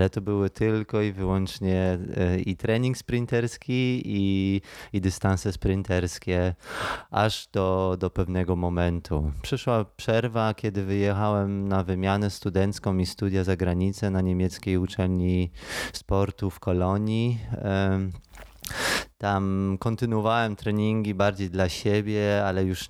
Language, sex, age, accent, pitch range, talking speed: Polish, male, 20-39, native, 90-100 Hz, 115 wpm